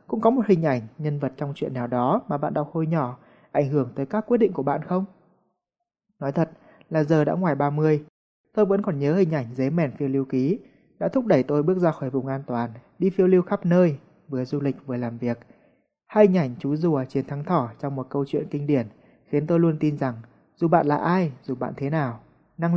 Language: Vietnamese